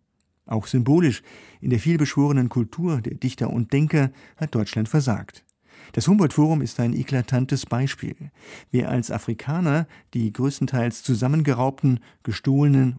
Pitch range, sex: 115-140 Hz, male